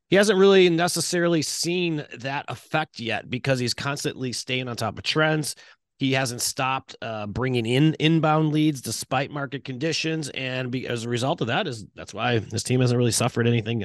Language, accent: English, American